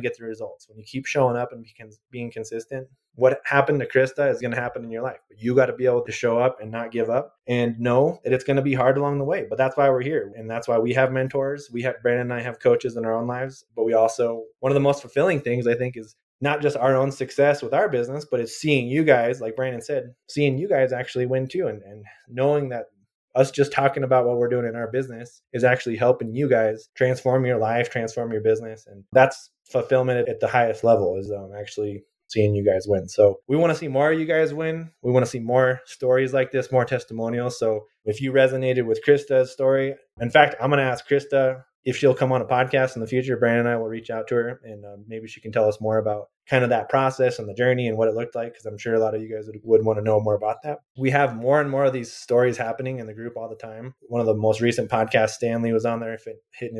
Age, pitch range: 20-39, 115-130 Hz